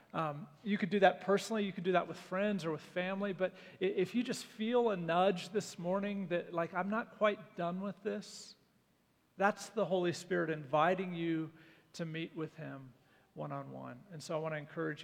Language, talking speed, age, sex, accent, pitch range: English, 195 wpm, 40-59, male, American, 170-200 Hz